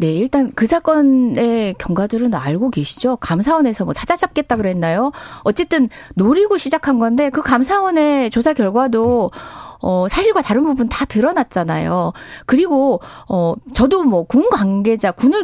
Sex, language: female, Korean